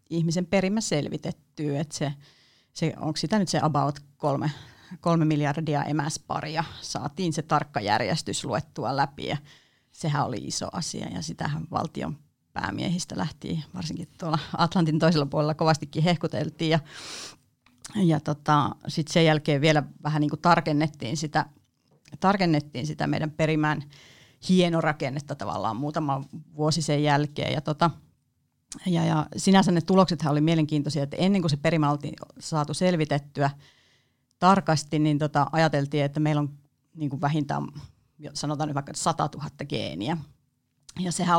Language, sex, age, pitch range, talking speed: Finnish, female, 30-49, 145-165 Hz, 135 wpm